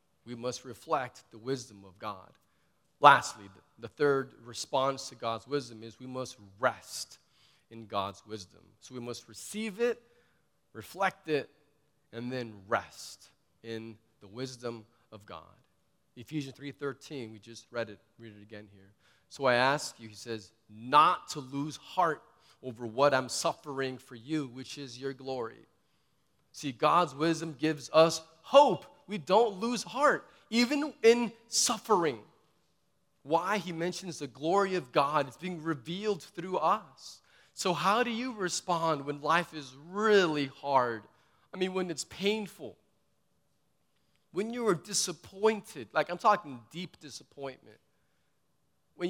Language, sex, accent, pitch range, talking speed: English, male, American, 120-185 Hz, 140 wpm